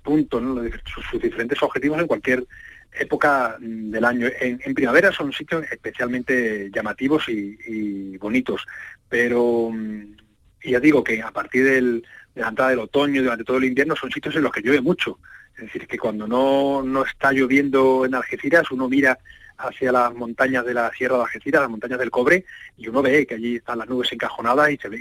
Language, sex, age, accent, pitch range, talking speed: Spanish, male, 40-59, Spanish, 110-135 Hz, 195 wpm